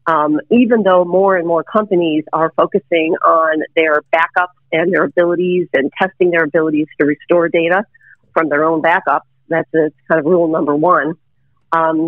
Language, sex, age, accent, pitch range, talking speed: English, female, 50-69, American, 155-180 Hz, 170 wpm